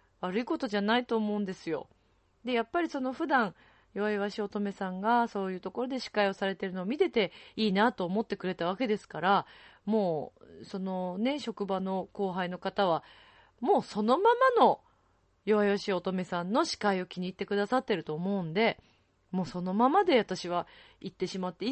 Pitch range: 160-235 Hz